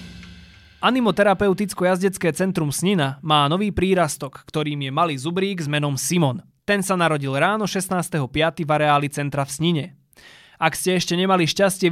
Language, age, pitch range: Slovak, 20-39, 145-185 Hz